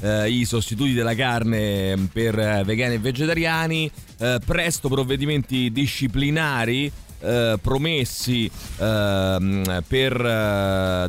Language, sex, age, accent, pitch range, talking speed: Italian, male, 30-49, native, 100-130 Hz, 105 wpm